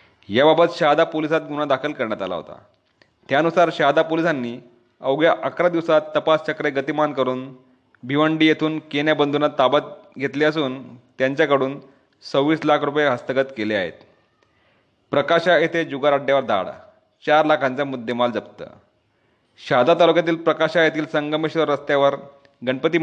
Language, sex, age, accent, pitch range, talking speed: Marathi, male, 30-49, native, 135-155 Hz, 125 wpm